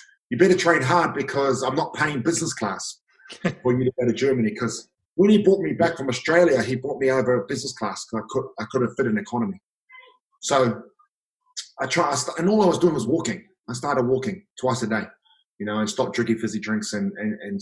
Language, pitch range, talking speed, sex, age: English, 125-175 Hz, 225 wpm, male, 20-39